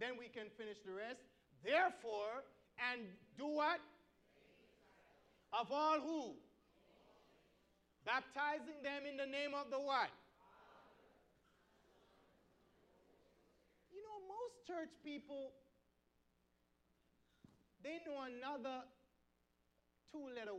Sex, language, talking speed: male, English, 85 wpm